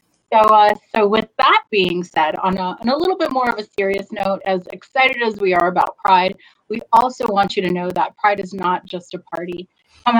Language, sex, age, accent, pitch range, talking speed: English, female, 30-49, American, 185-215 Hz, 220 wpm